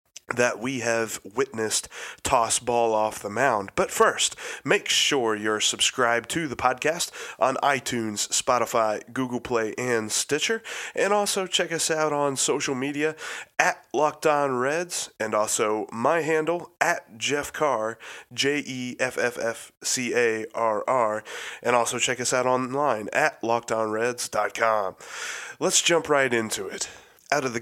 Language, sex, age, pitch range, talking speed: English, male, 30-49, 105-130 Hz, 130 wpm